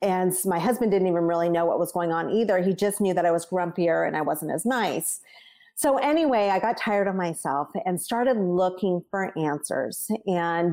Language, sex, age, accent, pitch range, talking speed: English, female, 30-49, American, 175-235 Hz, 205 wpm